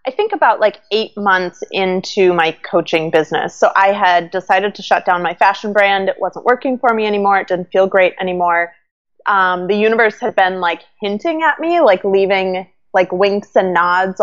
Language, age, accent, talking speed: English, 20-39, American, 195 wpm